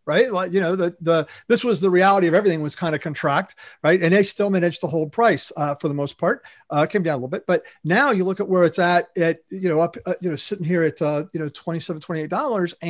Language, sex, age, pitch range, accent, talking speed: English, male, 40-59, 160-190 Hz, American, 265 wpm